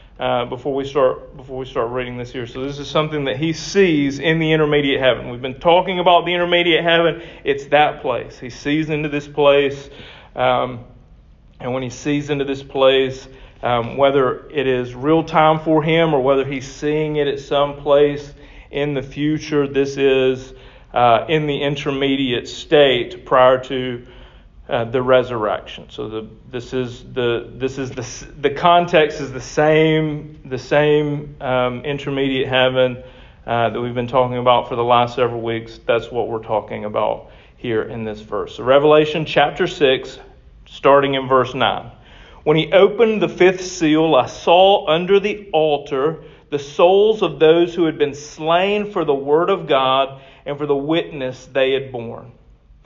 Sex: male